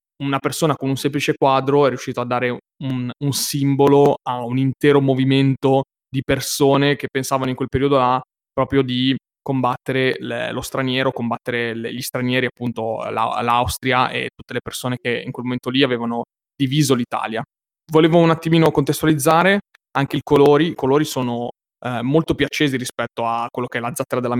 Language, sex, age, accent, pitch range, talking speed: Italian, male, 20-39, native, 125-140 Hz, 170 wpm